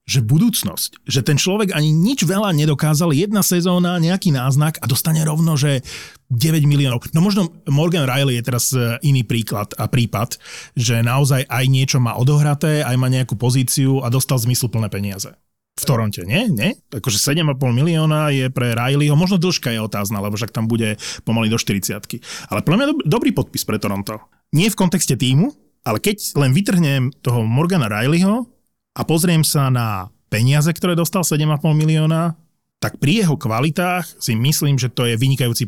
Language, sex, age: Slovak, male, 30-49